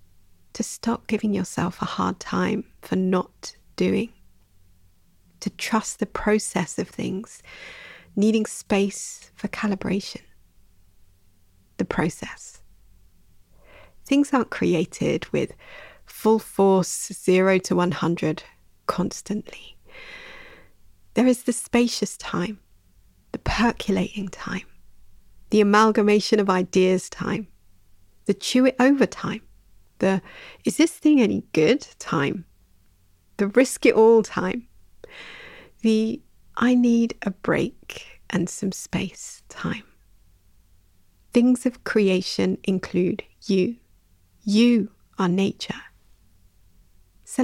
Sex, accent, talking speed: female, British, 100 wpm